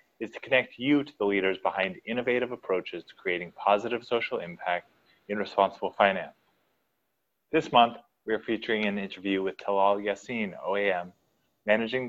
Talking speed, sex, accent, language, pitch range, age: 150 wpm, male, American, English, 100-130 Hz, 20-39